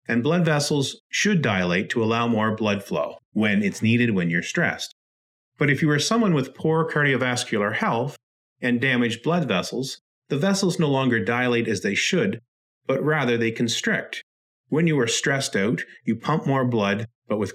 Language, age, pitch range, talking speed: English, 40-59, 115-155 Hz, 180 wpm